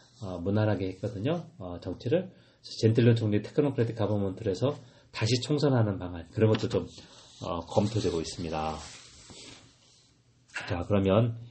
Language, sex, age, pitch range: Korean, male, 40-59, 95-130 Hz